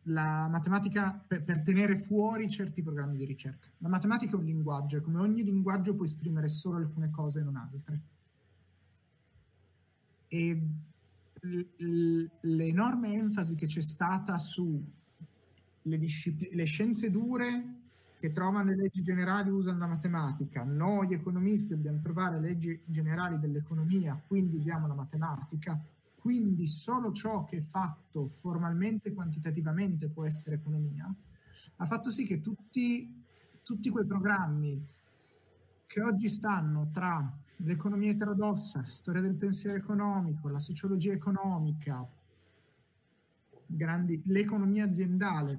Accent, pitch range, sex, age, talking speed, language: native, 150-195 Hz, male, 30-49, 130 wpm, Italian